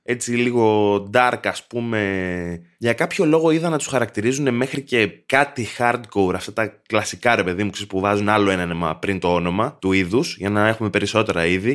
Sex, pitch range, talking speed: male, 90-125 Hz, 190 wpm